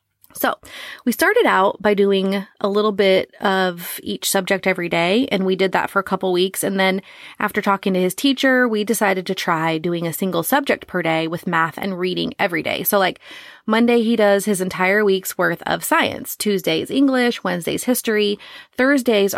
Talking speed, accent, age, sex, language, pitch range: 190 wpm, American, 30-49, female, English, 185-220 Hz